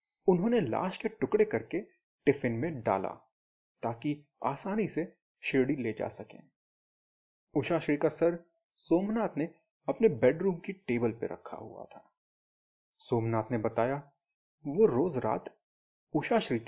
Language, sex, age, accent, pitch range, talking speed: Hindi, male, 30-49, native, 115-185 Hz, 130 wpm